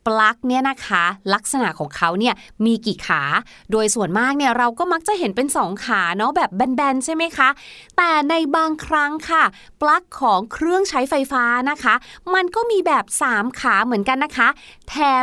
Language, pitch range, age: Thai, 215-305 Hz, 20-39